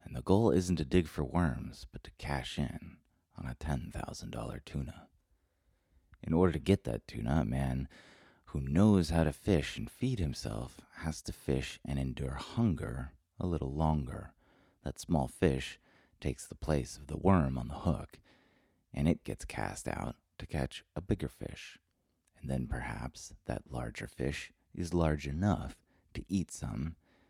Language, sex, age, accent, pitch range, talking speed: English, male, 30-49, American, 65-85 Hz, 165 wpm